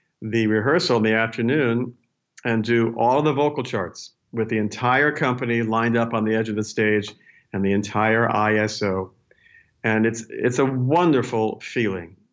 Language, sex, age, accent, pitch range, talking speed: English, male, 50-69, American, 105-125 Hz, 160 wpm